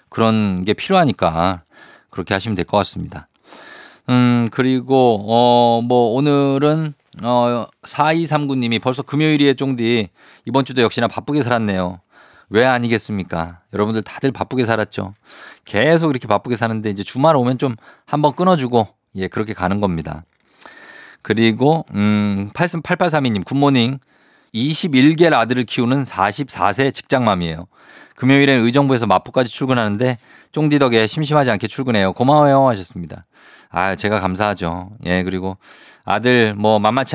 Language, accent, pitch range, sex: Korean, native, 100-130 Hz, male